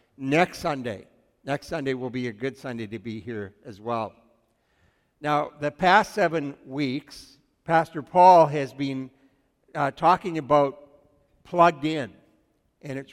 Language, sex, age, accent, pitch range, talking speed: English, male, 60-79, American, 135-165 Hz, 135 wpm